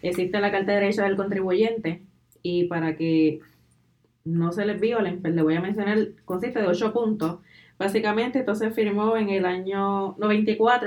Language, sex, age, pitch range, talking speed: Spanish, female, 20-39, 180-220 Hz, 165 wpm